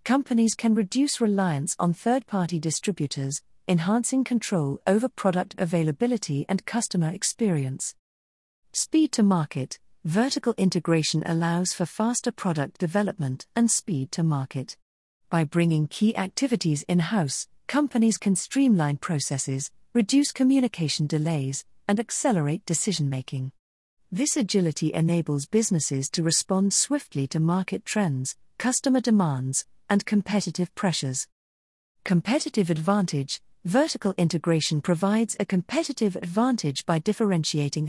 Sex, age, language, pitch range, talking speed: female, 40-59, English, 155-215 Hz, 115 wpm